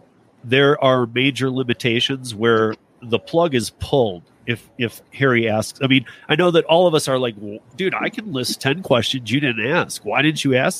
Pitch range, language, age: 110-135 Hz, English, 40-59